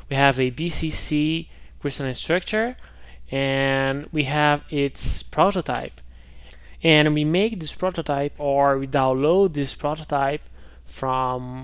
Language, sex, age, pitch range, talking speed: English, male, 20-39, 130-155 Hz, 115 wpm